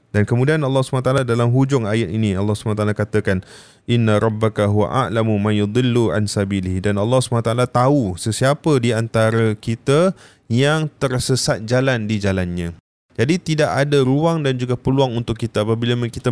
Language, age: Malay, 20-39